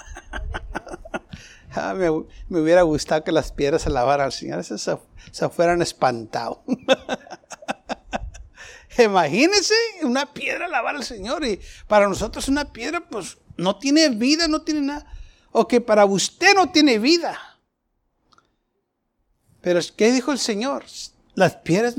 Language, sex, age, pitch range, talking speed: Spanish, male, 60-79, 175-255 Hz, 130 wpm